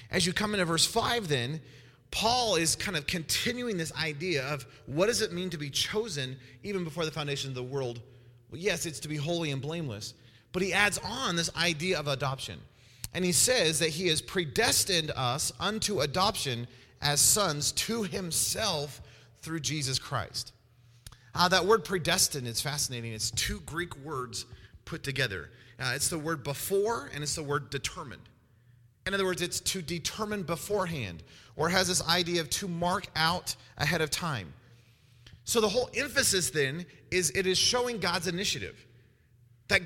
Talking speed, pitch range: 170 wpm, 130-190 Hz